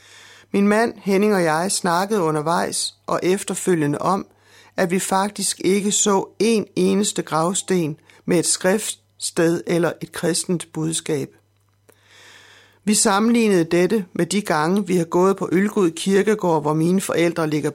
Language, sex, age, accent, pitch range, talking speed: Danish, male, 60-79, native, 160-195 Hz, 140 wpm